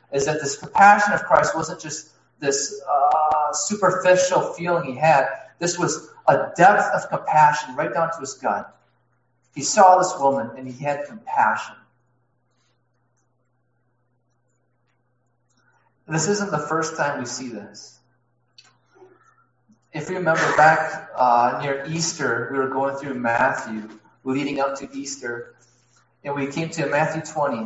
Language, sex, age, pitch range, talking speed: English, male, 30-49, 125-180 Hz, 135 wpm